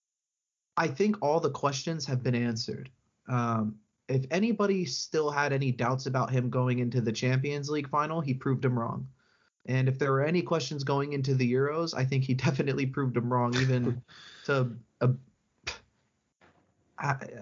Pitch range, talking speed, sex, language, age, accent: 120-140 Hz, 165 wpm, male, English, 30-49, American